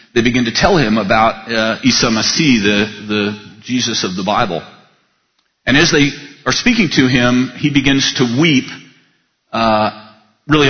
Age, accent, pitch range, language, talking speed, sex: 40-59, American, 105-125 Hz, English, 155 wpm, male